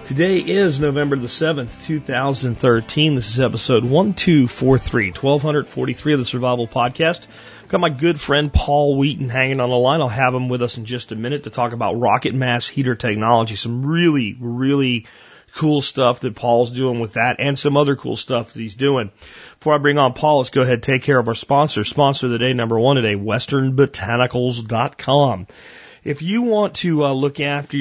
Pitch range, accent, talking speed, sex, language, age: 115-140 Hz, American, 190 wpm, male, English, 40-59